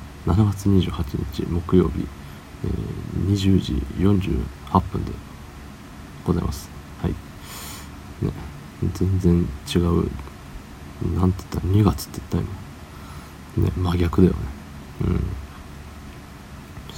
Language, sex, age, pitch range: Japanese, male, 40-59, 70-95 Hz